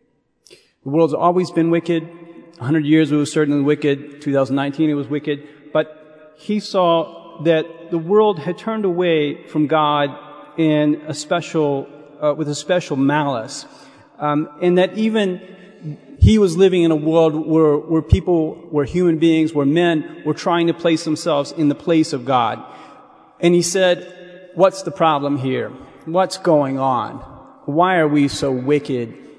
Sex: male